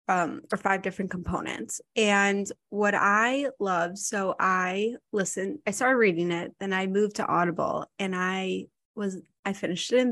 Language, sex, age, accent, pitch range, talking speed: English, female, 20-39, American, 185-215 Hz, 165 wpm